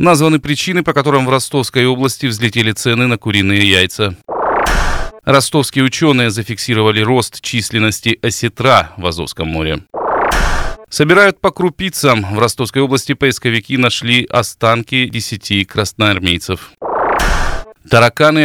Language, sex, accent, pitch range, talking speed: Russian, male, native, 100-130 Hz, 105 wpm